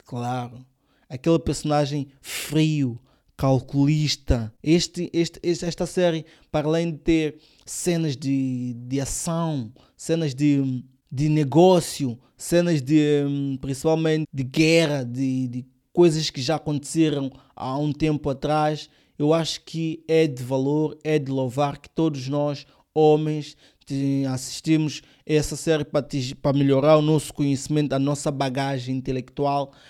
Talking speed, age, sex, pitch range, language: 130 wpm, 20-39, male, 130-155 Hz, Portuguese